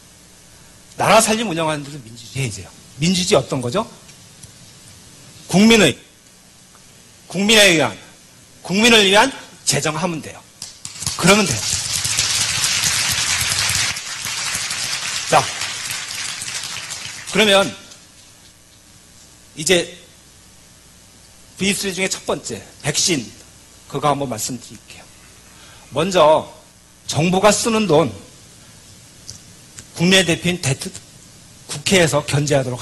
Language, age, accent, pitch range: Korean, 40-59, native, 120-185 Hz